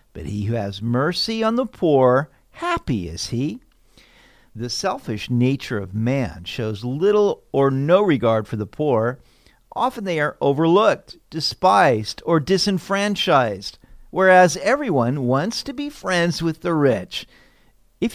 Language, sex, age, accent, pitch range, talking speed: English, male, 50-69, American, 120-195 Hz, 135 wpm